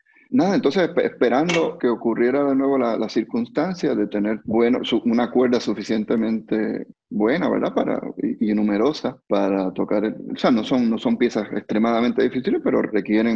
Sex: male